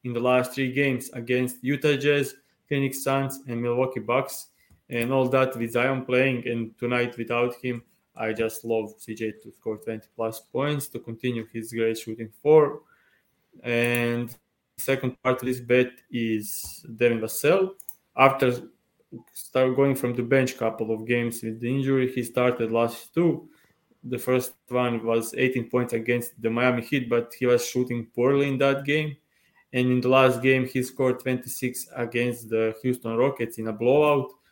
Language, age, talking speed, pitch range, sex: English, 20-39, 170 wpm, 115-130 Hz, male